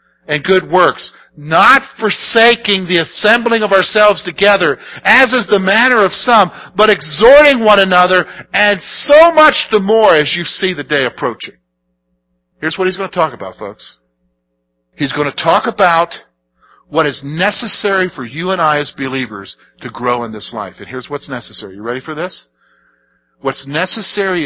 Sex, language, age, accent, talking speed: male, English, 50-69, American, 165 wpm